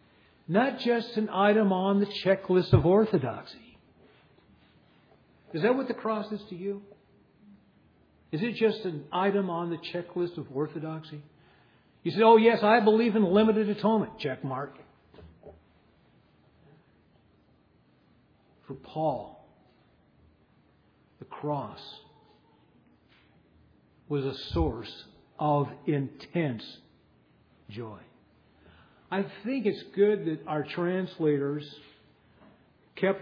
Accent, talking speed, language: American, 100 wpm, English